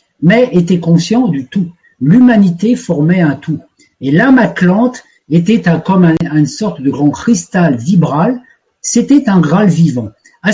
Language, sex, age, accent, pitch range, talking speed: French, male, 50-69, French, 150-215 Hz, 155 wpm